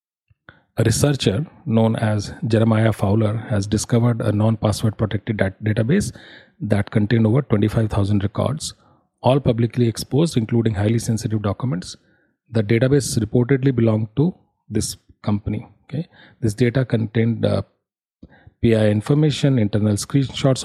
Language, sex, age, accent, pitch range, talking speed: English, male, 40-59, Indian, 105-120 Hz, 115 wpm